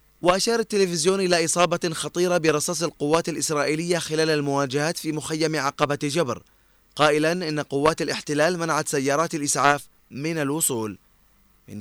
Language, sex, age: Arabic, male, 20-39